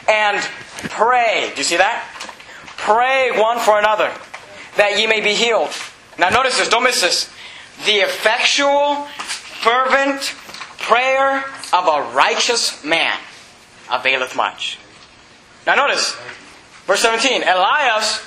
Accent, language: American, English